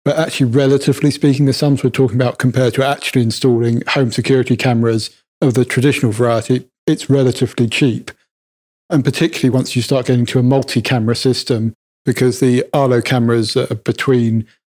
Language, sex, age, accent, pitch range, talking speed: English, male, 40-59, British, 120-135 Hz, 160 wpm